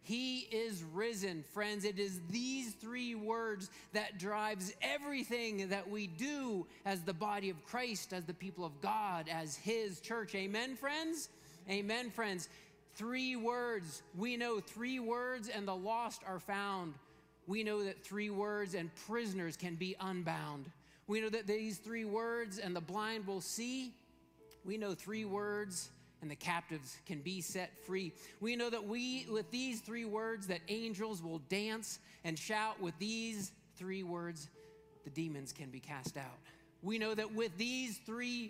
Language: English